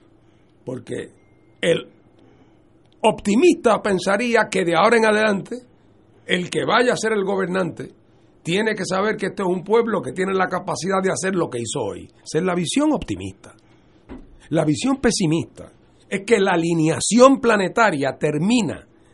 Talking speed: 150 wpm